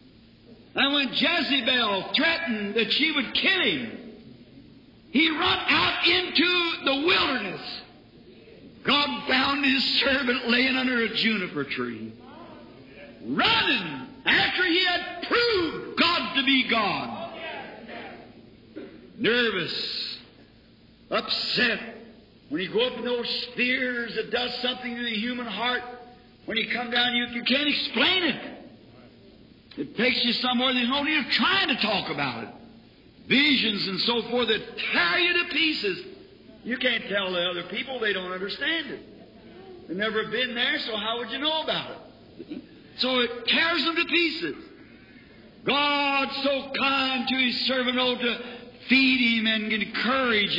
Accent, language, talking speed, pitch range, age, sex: American, English, 140 wpm, 230-290 Hz, 50-69, male